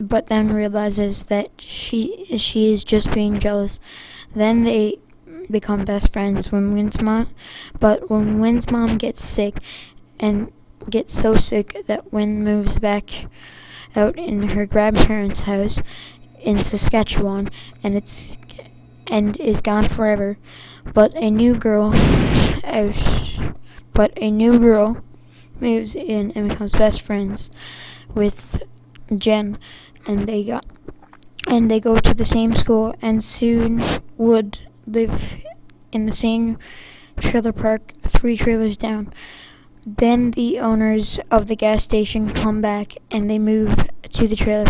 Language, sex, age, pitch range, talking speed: English, female, 10-29, 210-225 Hz, 135 wpm